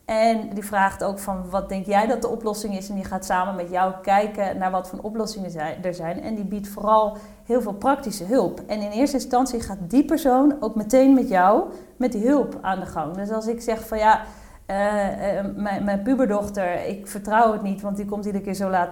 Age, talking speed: 40-59, 225 wpm